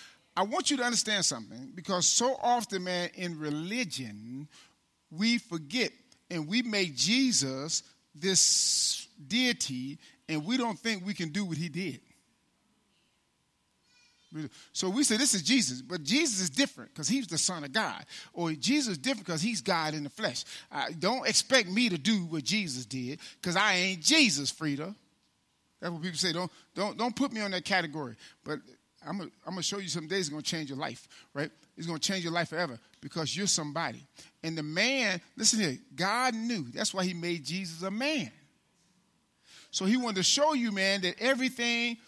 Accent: American